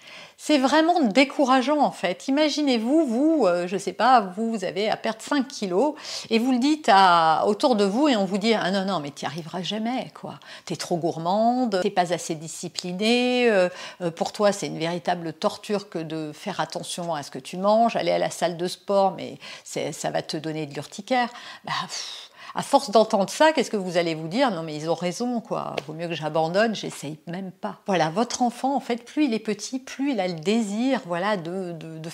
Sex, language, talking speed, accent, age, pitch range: female, French, 220 wpm, French, 50-69, 185-265 Hz